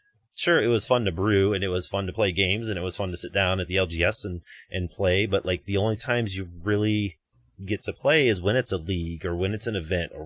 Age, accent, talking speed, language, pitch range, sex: 30-49, American, 275 wpm, English, 90-110 Hz, male